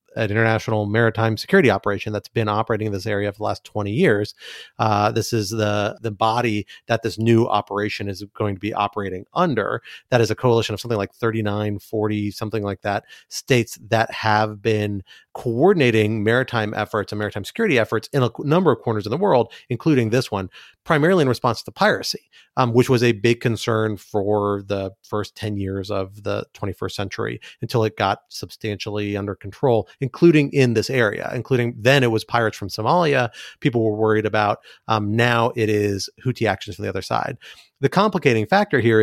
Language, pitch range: English, 105-115 Hz